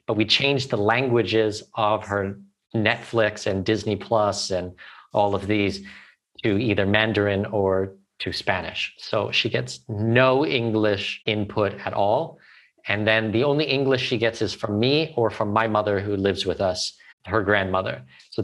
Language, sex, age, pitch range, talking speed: English, male, 40-59, 100-120 Hz, 165 wpm